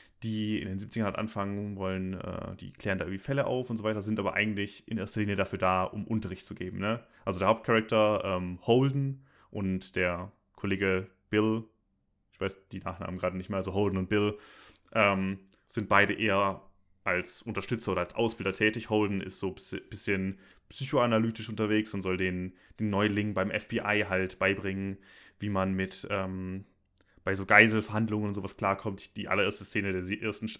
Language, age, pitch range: German, 20-39, 95-110 Hz